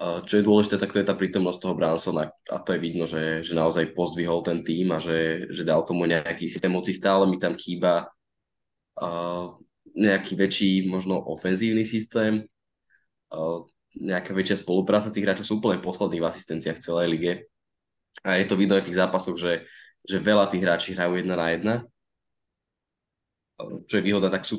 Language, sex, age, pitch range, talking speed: Slovak, male, 20-39, 85-95 Hz, 180 wpm